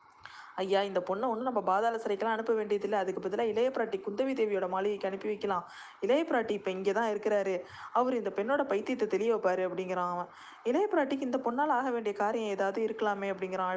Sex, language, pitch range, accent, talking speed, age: female, Tamil, 190-235 Hz, native, 165 wpm, 20-39